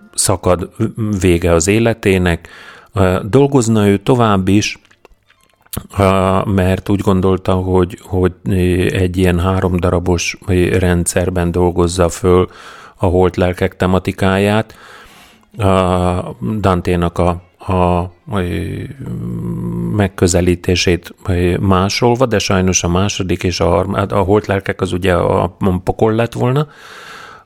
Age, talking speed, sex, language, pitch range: 30-49, 85 wpm, male, Hungarian, 85-100 Hz